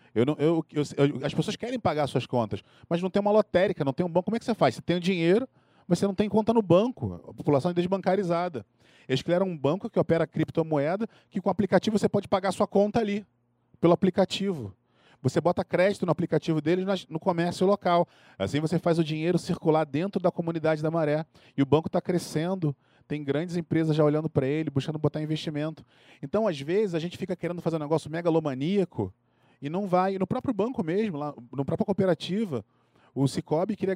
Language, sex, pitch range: Portuguese, male, 145-190 Hz